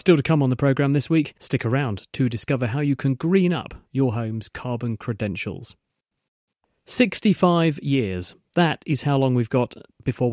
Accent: British